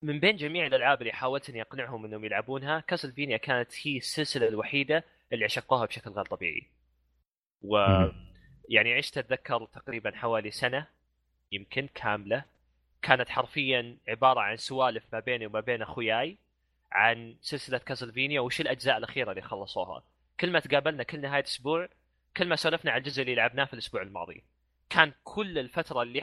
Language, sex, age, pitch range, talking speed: Arabic, male, 20-39, 110-145 Hz, 155 wpm